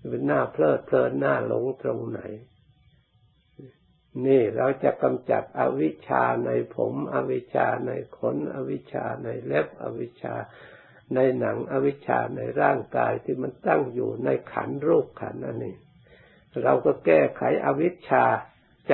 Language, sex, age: Thai, male, 60-79